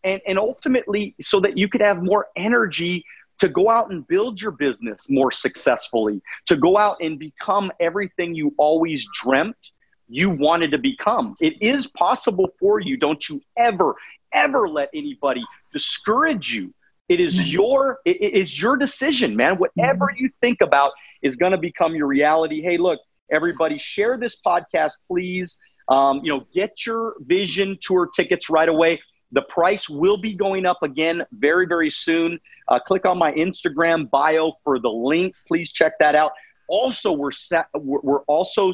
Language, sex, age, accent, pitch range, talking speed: English, male, 30-49, American, 155-220 Hz, 165 wpm